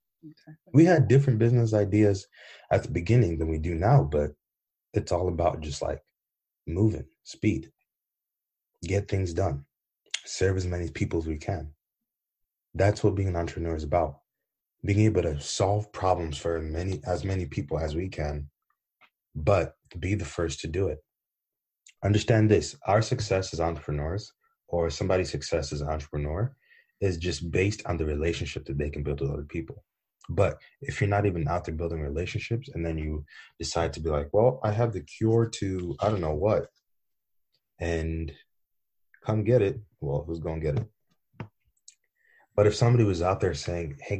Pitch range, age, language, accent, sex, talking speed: 80-105 Hz, 20-39, English, American, male, 170 wpm